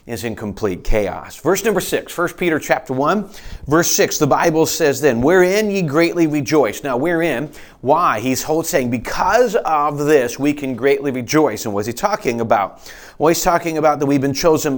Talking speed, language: 190 wpm, English